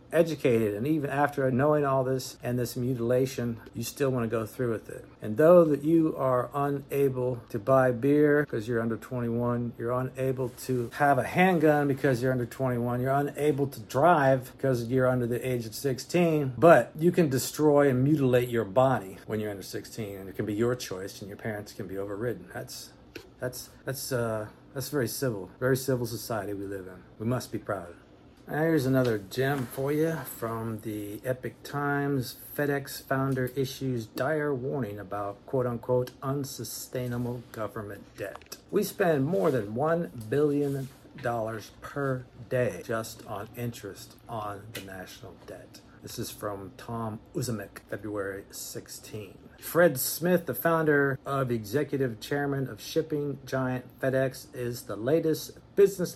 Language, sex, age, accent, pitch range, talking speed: English, male, 50-69, American, 115-140 Hz, 160 wpm